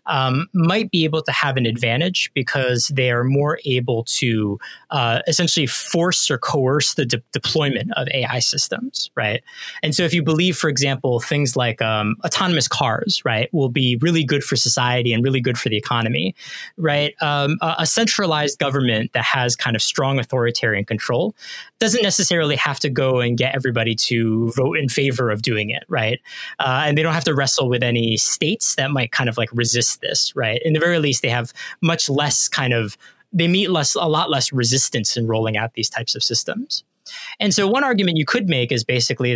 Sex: male